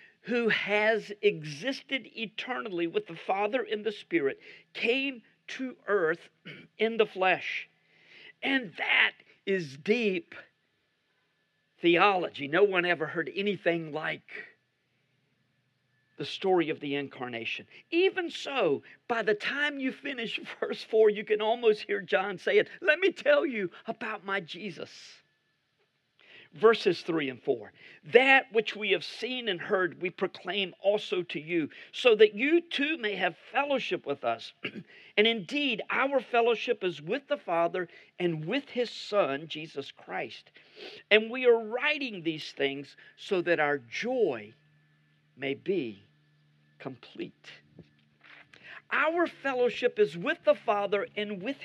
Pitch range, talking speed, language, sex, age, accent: 165-260 Hz, 135 wpm, English, male, 50-69, American